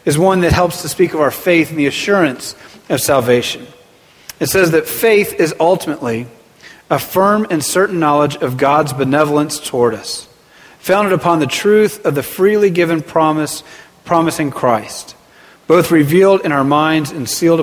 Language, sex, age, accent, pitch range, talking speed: English, male, 40-59, American, 145-175 Hz, 165 wpm